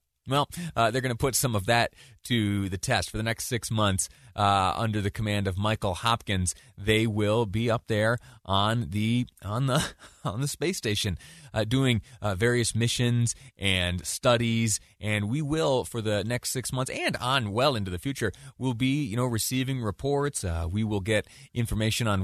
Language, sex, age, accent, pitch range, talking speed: English, male, 30-49, American, 100-130 Hz, 190 wpm